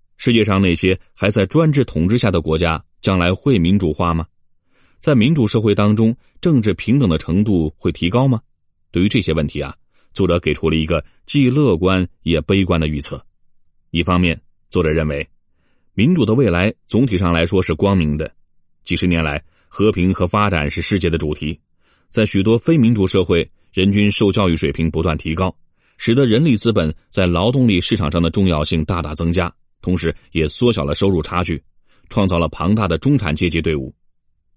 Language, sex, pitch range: Chinese, male, 80-100 Hz